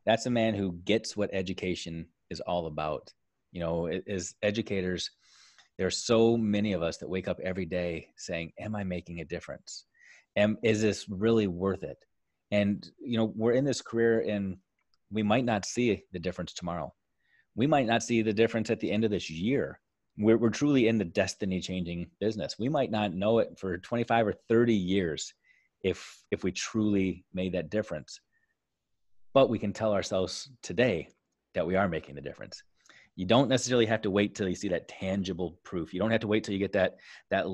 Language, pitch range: English, 90-115 Hz